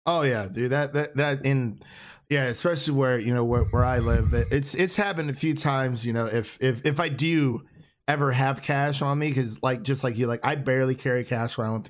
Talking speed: 230 wpm